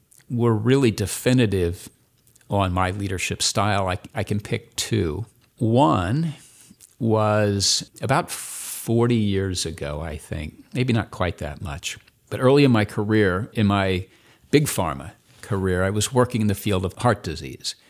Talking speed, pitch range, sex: 150 wpm, 95-120 Hz, male